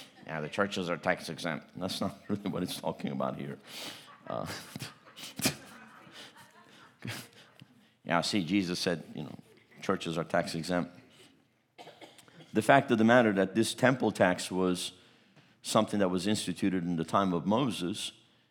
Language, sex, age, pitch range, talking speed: English, male, 50-69, 90-110 Hz, 145 wpm